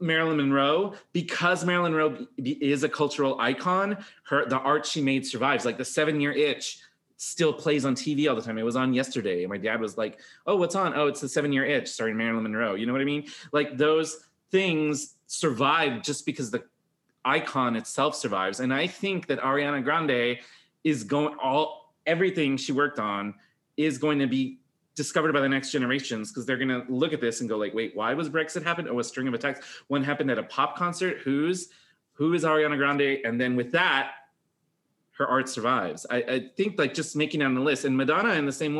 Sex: male